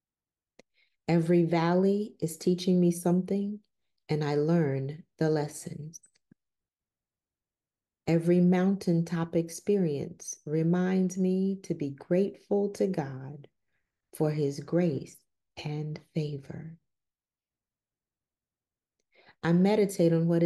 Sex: female